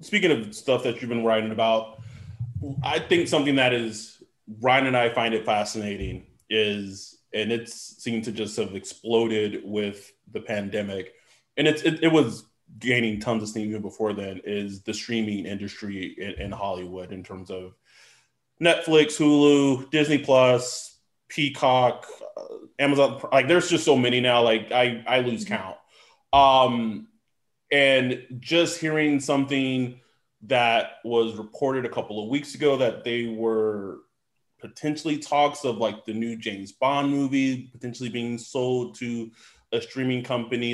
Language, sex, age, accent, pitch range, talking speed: English, male, 20-39, American, 110-140 Hz, 150 wpm